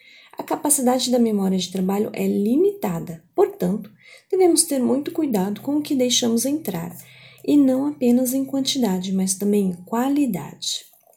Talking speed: 145 wpm